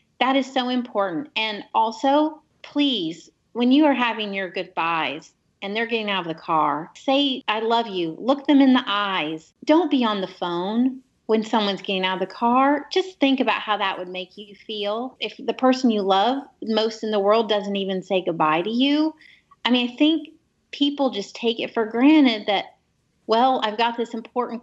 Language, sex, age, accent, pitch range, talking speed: English, female, 30-49, American, 195-250 Hz, 195 wpm